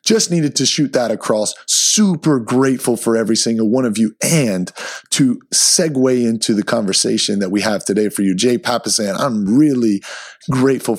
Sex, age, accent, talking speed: male, 30-49, American, 170 wpm